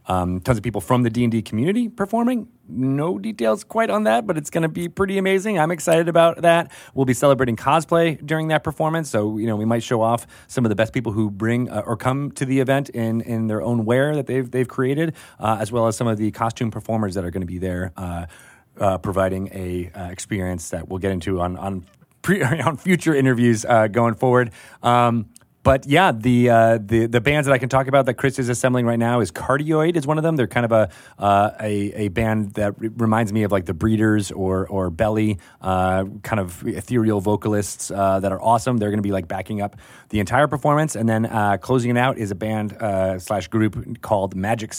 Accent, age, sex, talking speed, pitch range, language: American, 30-49, male, 230 wpm, 105-135 Hz, English